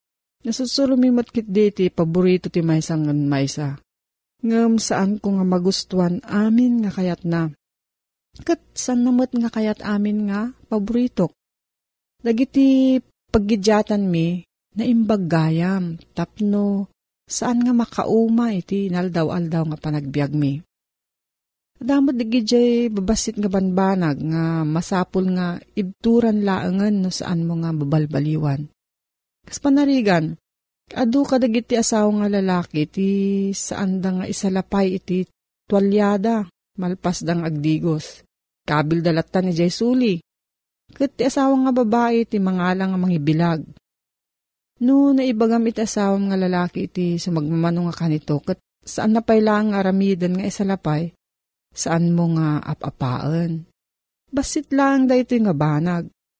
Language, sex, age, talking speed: Filipino, female, 40-59, 120 wpm